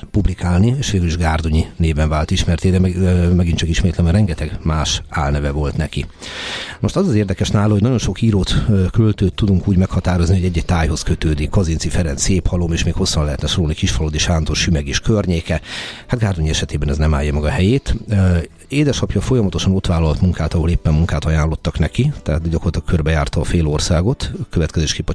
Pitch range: 80-95 Hz